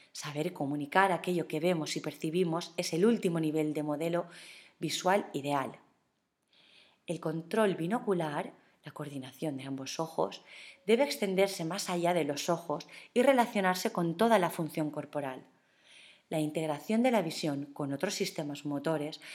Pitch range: 150-195 Hz